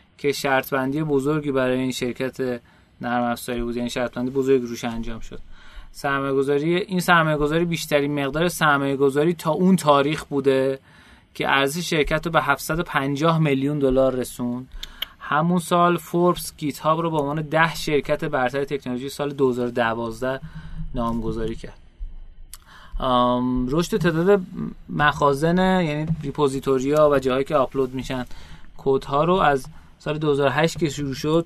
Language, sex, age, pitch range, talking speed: Persian, male, 30-49, 130-160 Hz, 140 wpm